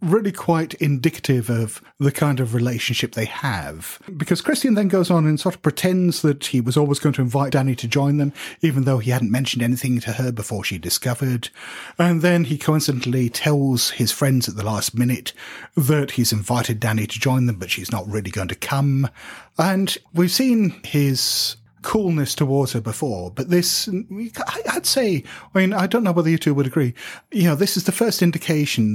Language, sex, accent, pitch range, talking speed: English, male, British, 120-170 Hz, 195 wpm